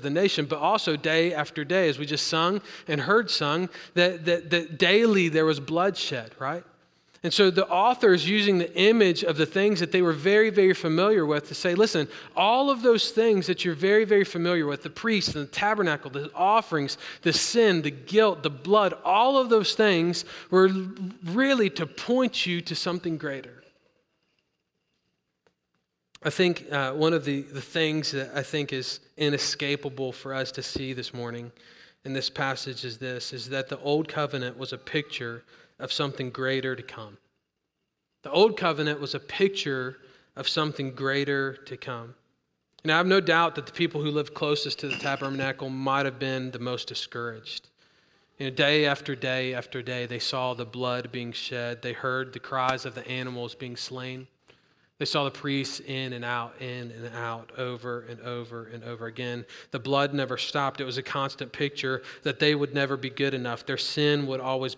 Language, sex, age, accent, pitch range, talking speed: English, male, 40-59, American, 130-170 Hz, 185 wpm